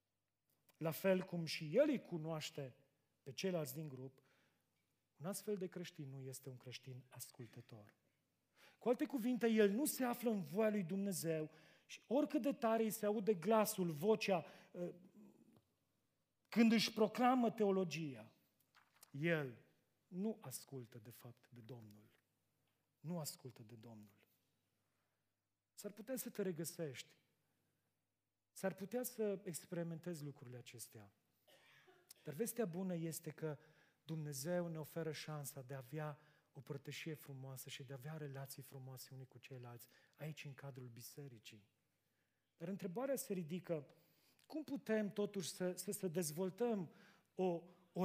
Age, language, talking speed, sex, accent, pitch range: 40-59, Romanian, 135 wpm, male, native, 135-195 Hz